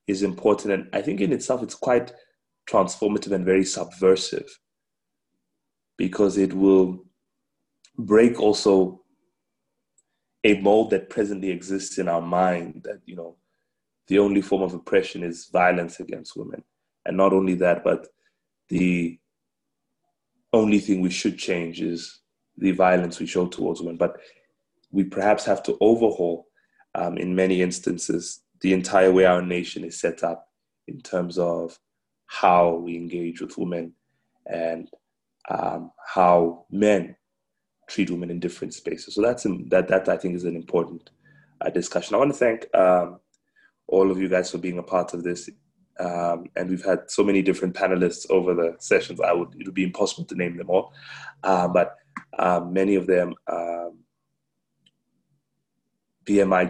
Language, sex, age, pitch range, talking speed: English, male, 20-39, 85-95 Hz, 155 wpm